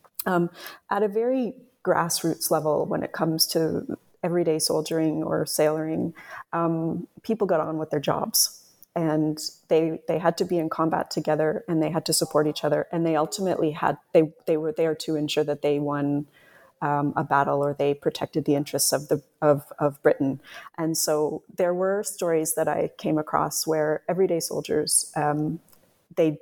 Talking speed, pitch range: 175 wpm, 150-170 Hz